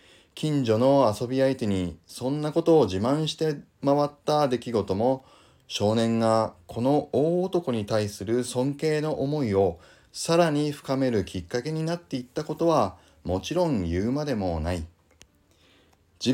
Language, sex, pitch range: Japanese, male, 95-155 Hz